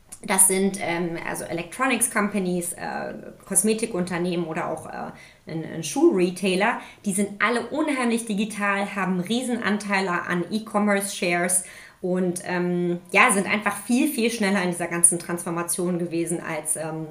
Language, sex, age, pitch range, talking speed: German, female, 30-49, 170-210 Hz, 135 wpm